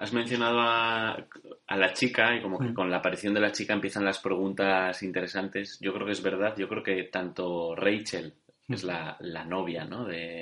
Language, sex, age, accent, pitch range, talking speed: Spanish, male, 20-39, Spanish, 95-105 Hz, 205 wpm